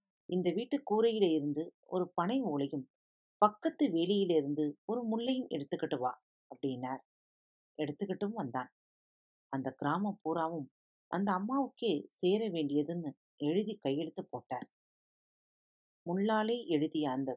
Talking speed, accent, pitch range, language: 100 wpm, native, 145-210 Hz, Tamil